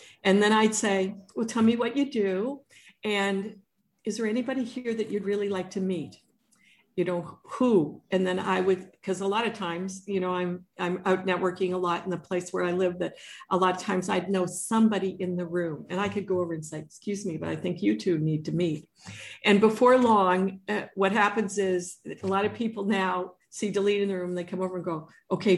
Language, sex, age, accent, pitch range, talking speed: English, female, 50-69, American, 180-215 Hz, 230 wpm